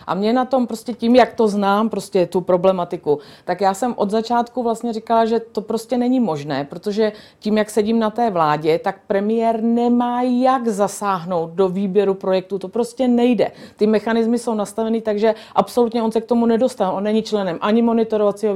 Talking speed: 190 wpm